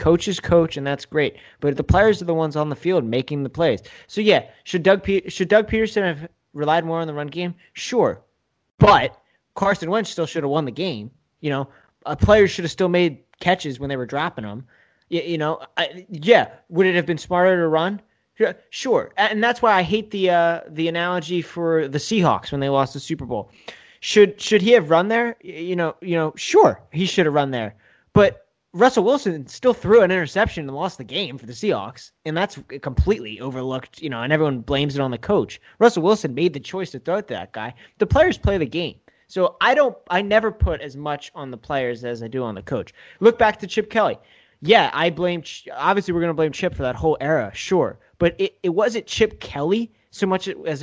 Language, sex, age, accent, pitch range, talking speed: English, male, 20-39, American, 145-195 Hz, 225 wpm